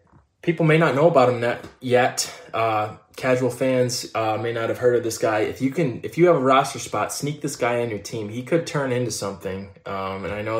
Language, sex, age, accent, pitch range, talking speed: English, male, 20-39, American, 110-140 Hz, 245 wpm